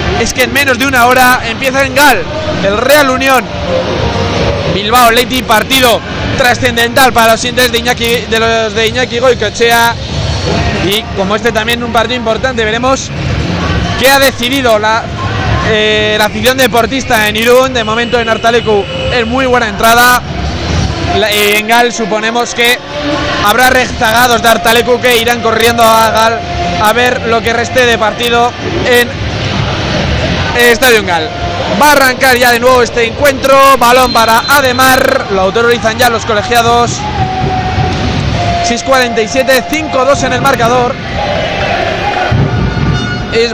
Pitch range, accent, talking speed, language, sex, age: 225-255 Hz, Spanish, 135 wpm, Spanish, male, 20-39